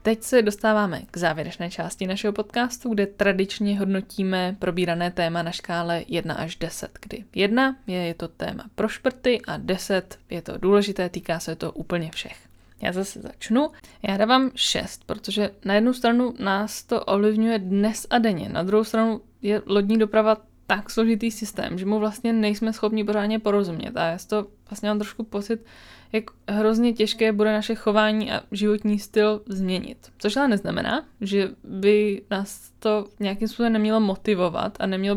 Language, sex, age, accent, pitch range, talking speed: Czech, female, 20-39, native, 195-220 Hz, 165 wpm